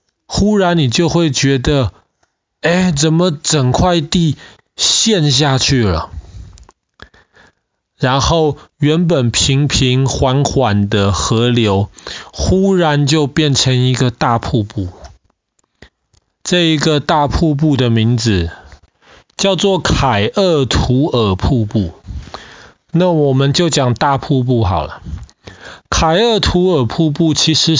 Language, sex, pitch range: Chinese, male, 120-155 Hz